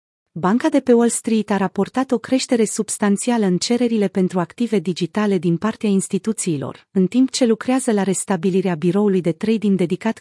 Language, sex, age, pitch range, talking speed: Romanian, female, 30-49, 185-230 Hz, 165 wpm